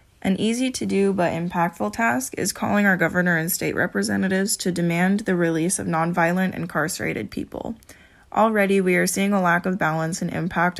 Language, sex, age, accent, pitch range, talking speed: English, female, 20-39, American, 170-200 Hz, 180 wpm